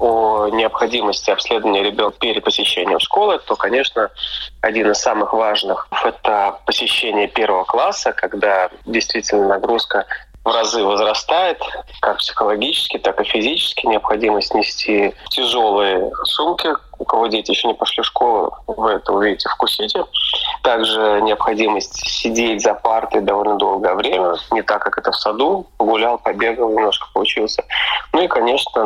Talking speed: 135 wpm